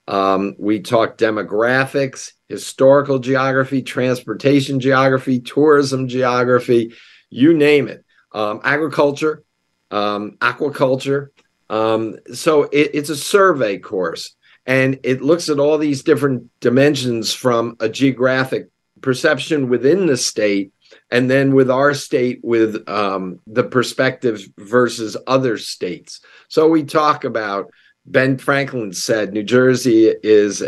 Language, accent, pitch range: English, American, 110-140 Hz